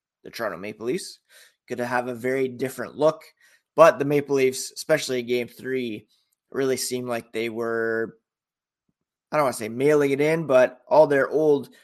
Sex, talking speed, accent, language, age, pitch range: male, 175 wpm, American, English, 20-39, 120-145 Hz